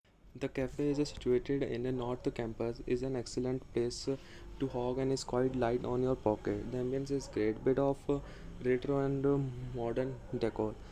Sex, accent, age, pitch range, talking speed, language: male, Indian, 20-39, 115-130 Hz, 175 wpm, English